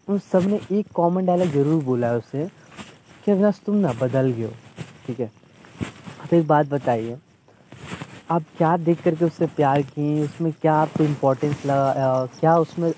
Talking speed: 170 wpm